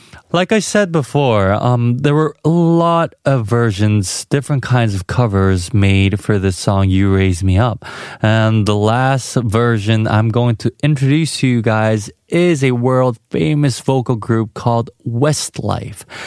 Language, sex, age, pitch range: Korean, male, 20-39, 105-135 Hz